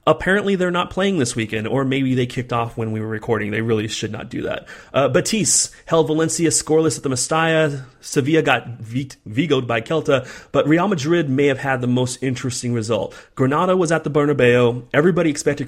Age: 30-49